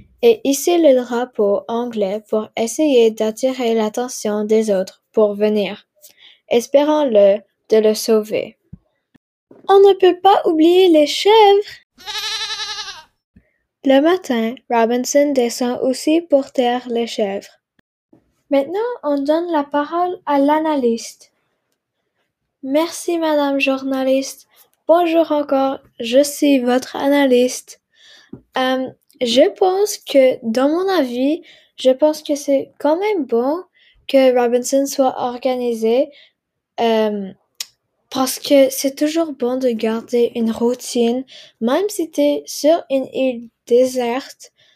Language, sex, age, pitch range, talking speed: French, female, 10-29, 245-305 Hz, 115 wpm